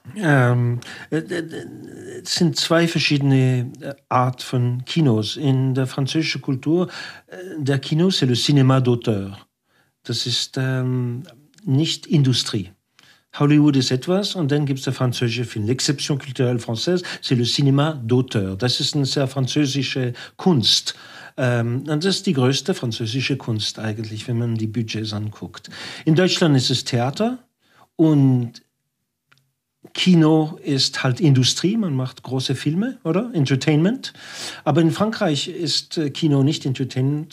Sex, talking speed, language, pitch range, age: male, 140 wpm, German, 125-155 Hz, 50-69